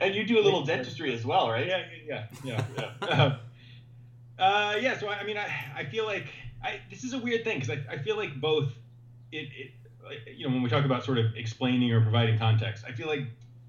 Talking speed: 225 wpm